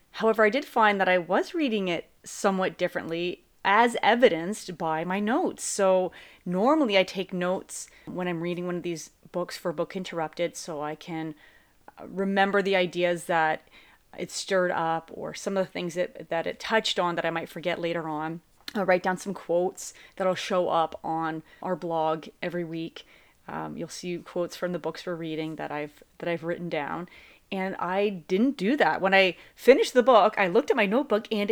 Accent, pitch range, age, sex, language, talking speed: American, 170-220 Hz, 30-49, female, English, 190 wpm